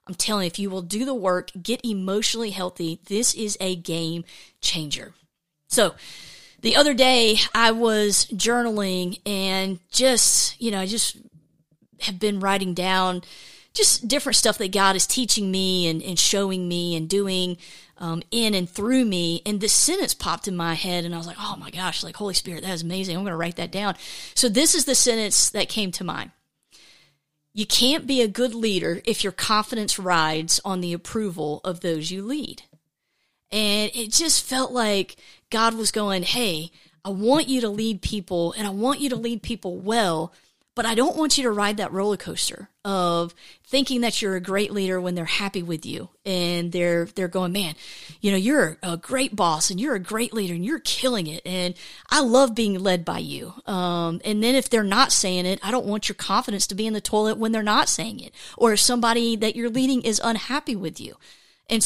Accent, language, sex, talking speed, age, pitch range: American, English, female, 205 wpm, 30-49, 180-235 Hz